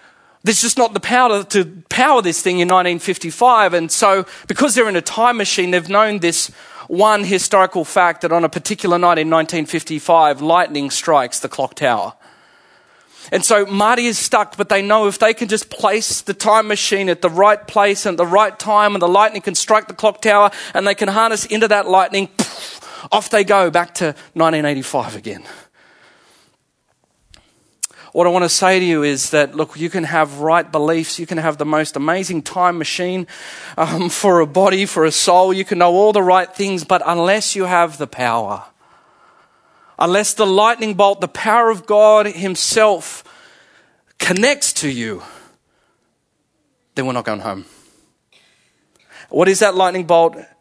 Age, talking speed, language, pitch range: 30-49, 175 wpm, English, 165-210 Hz